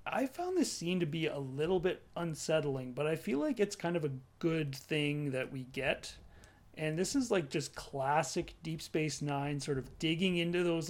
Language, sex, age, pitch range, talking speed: English, male, 30-49, 135-170 Hz, 205 wpm